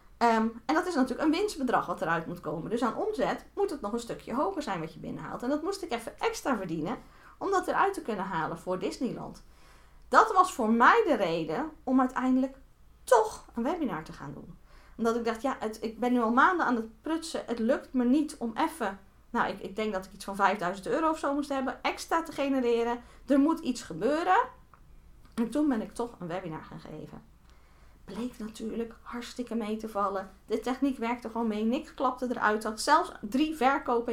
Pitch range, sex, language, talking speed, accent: 220-285 Hz, female, Dutch, 210 wpm, Dutch